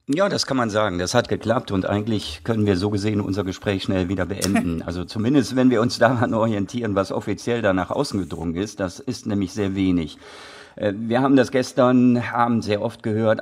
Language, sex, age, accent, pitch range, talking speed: German, male, 50-69, German, 95-115 Hz, 205 wpm